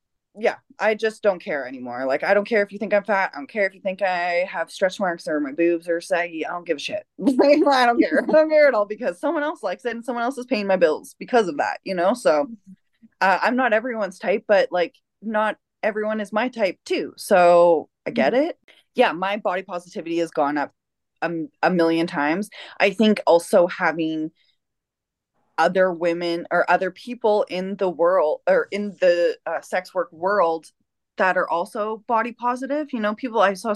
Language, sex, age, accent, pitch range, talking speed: English, female, 20-39, American, 170-235 Hz, 210 wpm